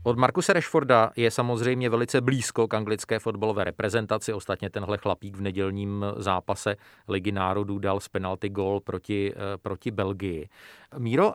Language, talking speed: Czech, 145 wpm